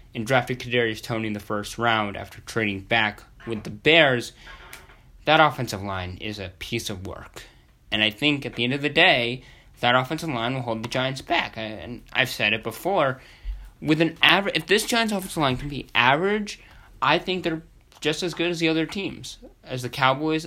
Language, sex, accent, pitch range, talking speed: English, male, American, 115-155 Hz, 200 wpm